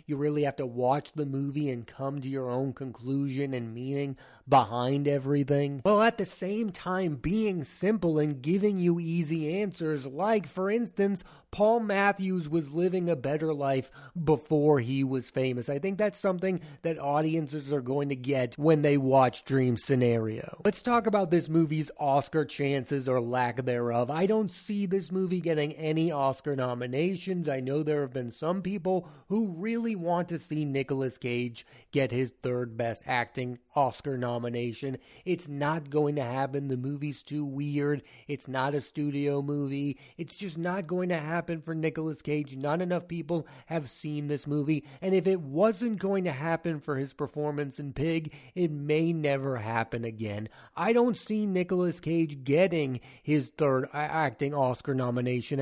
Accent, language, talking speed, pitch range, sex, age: American, English, 170 wpm, 135-180 Hz, male, 30-49